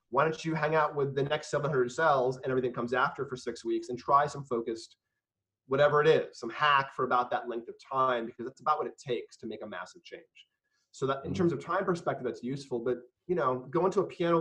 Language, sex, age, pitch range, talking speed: English, male, 30-49, 125-160 Hz, 245 wpm